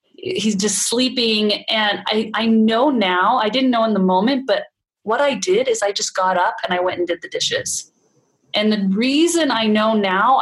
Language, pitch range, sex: English, 185-225 Hz, female